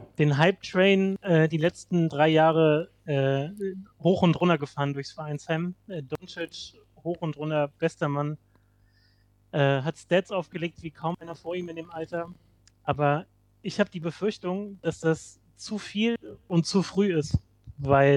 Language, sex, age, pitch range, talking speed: German, male, 30-49, 150-185 Hz, 160 wpm